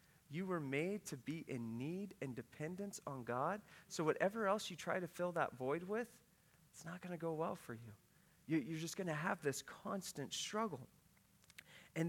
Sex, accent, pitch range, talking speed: male, American, 140-185 Hz, 195 wpm